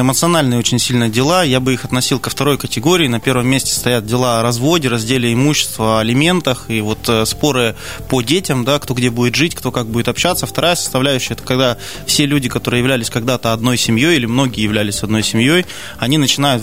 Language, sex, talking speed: Russian, male, 195 wpm